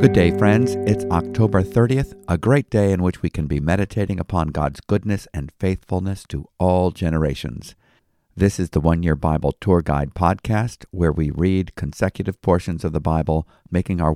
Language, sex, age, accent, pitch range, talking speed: English, male, 50-69, American, 80-100 Hz, 180 wpm